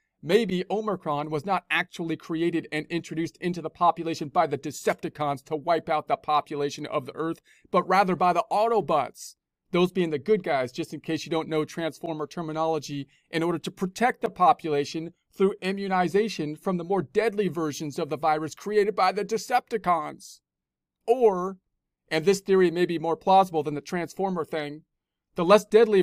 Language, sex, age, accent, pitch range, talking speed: English, male, 40-59, American, 155-185 Hz, 175 wpm